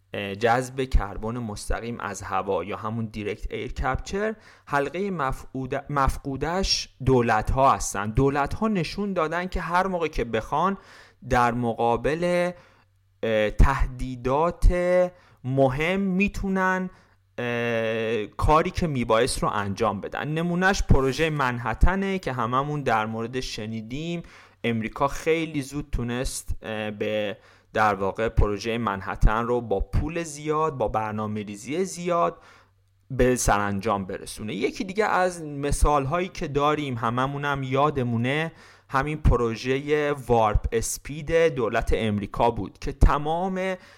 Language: Persian